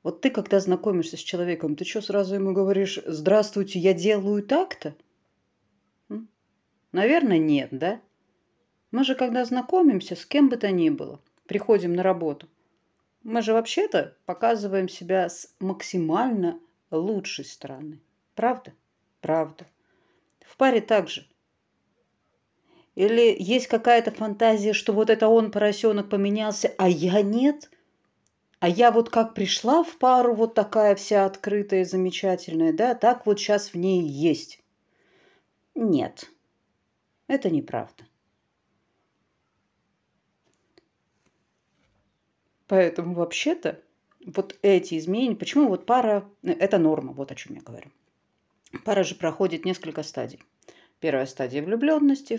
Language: Russian